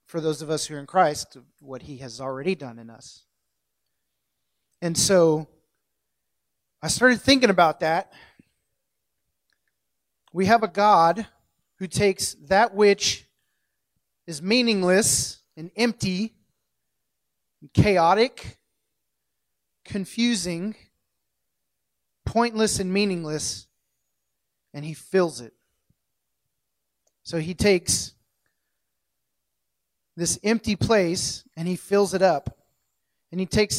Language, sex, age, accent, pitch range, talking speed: English, male, 30-49, American, 150-205 Hz, 100 wpm